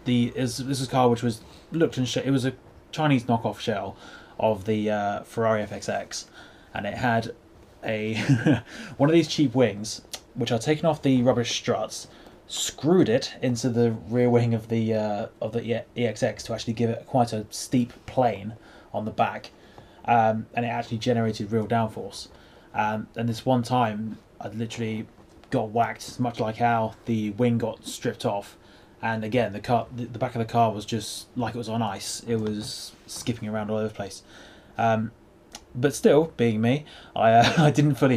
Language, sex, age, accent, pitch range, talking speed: English, male, 20-39, British, 110-125 Hz, 180 wpm